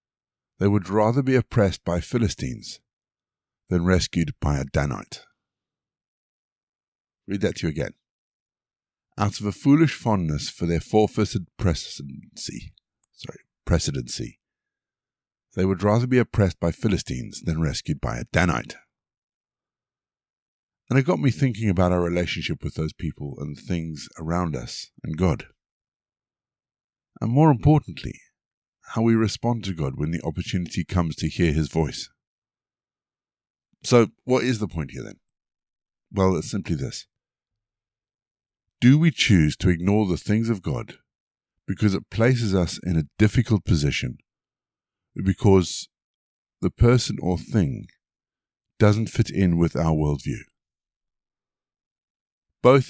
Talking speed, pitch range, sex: 125 wpm, 85-115 Hz, male